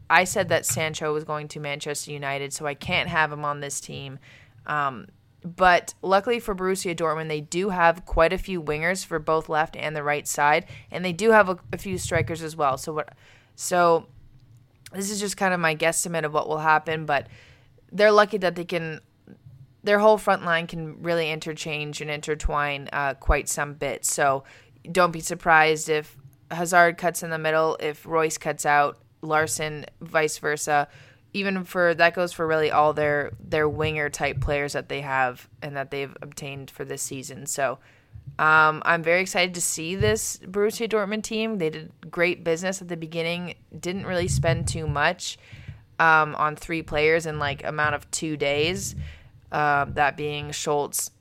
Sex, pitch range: female, 145-170 Hz